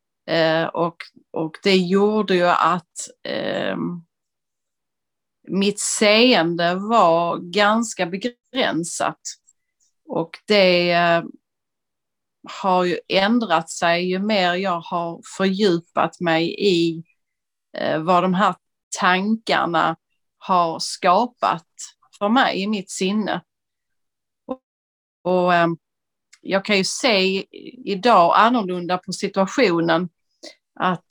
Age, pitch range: 30-49, 170-205 Hz